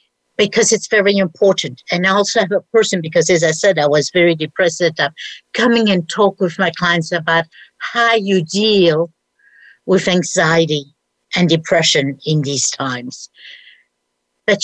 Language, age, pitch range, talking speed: English, 60-79, 160-205 Hz, 160 wpm